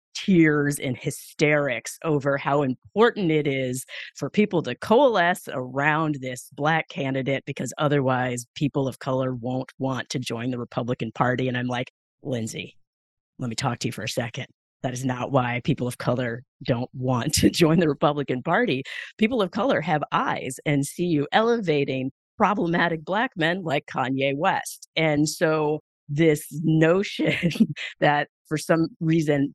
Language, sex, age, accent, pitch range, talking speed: English, female, 40-59, American, 130-155 Hz, 155 wpm